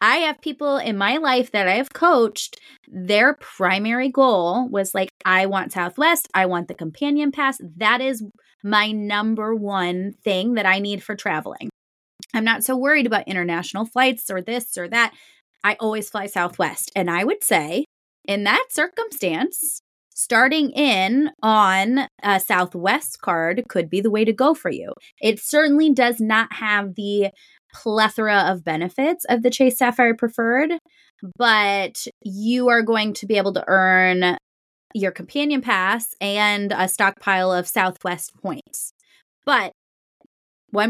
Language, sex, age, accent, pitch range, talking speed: English, female, 20-39, American, 185-250 Hz, 155 wpm